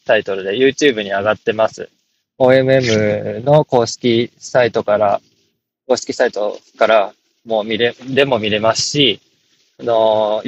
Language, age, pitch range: Japanese, 20-39, 110-135 Hz